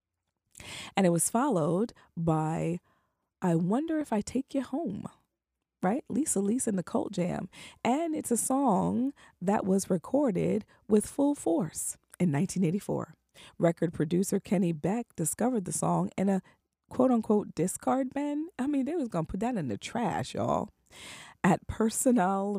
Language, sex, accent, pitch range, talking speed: English, female, American, 175-240 Hz, 155 wpm